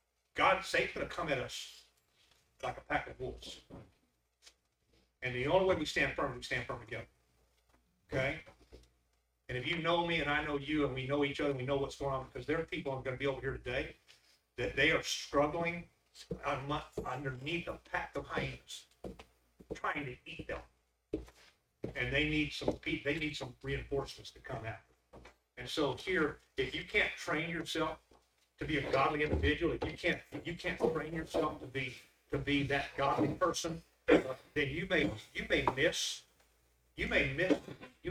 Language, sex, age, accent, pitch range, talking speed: English, male, 40-59, American, 105-155 Hz, 185 wpm